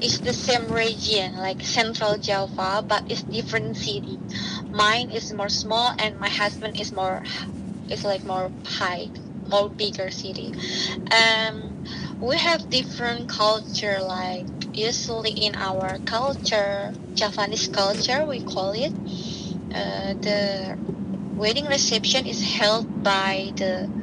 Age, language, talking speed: 20-39, English, 125 wpm